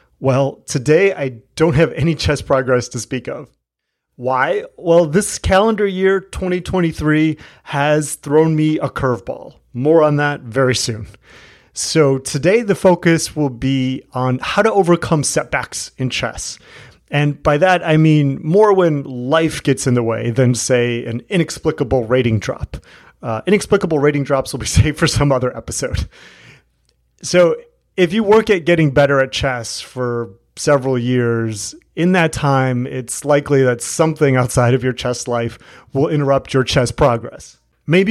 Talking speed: 155 wpm